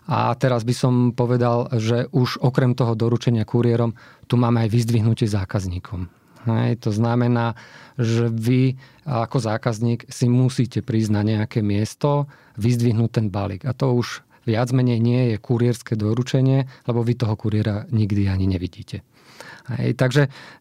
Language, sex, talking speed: Slovak, male, 145 wpm